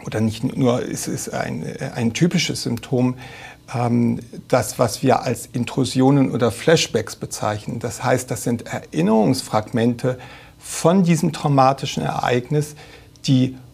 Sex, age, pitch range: male, 60-79, 125-150 Hz